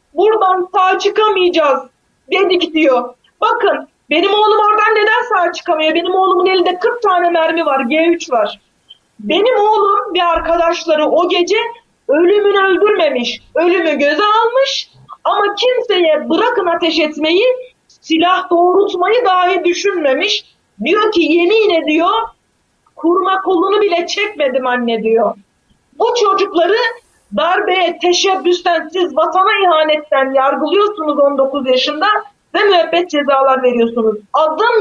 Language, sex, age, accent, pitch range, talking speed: Turkish, female, 40-59, native, 315-390 Hz, 115 wpm